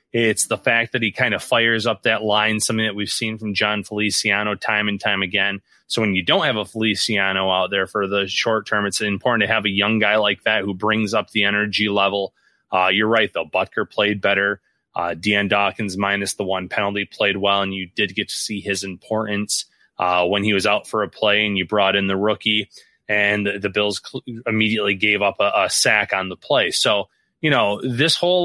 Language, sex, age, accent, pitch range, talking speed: English, male, 30-49, American, 100-115 Hz, 225 wpm